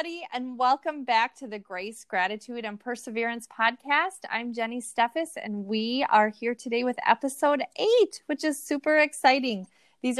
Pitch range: 210-275 Hz